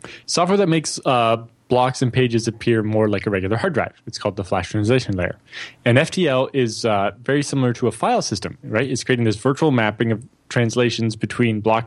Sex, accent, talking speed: male, American, 200 wpm